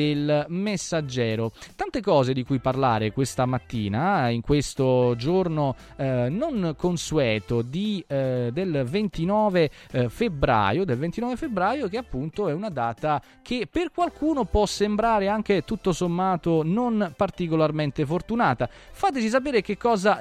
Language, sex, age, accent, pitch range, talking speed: Italian, male, 20-39, native, 130-200 Hz, 130 wpm